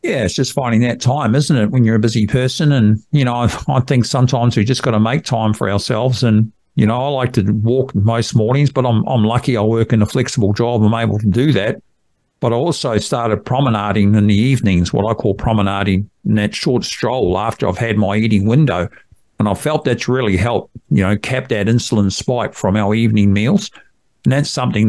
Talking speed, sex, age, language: 220 wpm, male, 50-69, English